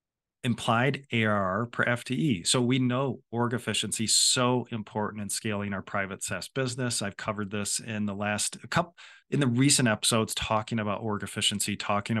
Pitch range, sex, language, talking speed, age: 100-115 Hz, male, English, 170 wpm, 40-59